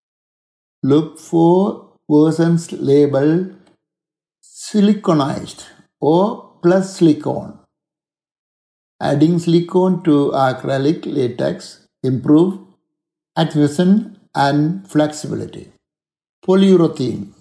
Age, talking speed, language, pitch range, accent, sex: 60-79, 60 wpm, Tamil, 135-170 Hz, native, male